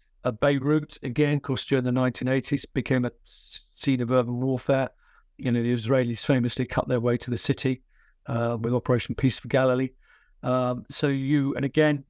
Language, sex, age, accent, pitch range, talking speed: English, male, 50-69, British, 125-145 Hz, 180 wpm